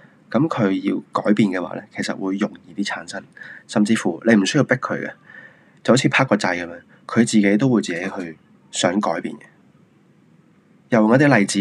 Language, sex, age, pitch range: Chinese, male, 20-39, 95-115 Hz